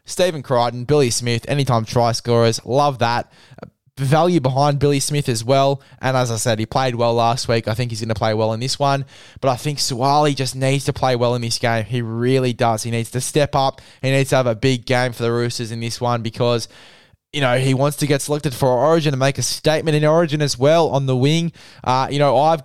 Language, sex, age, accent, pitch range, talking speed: English, male, 10-29, Australian, 120-140 Hz, 245 wpm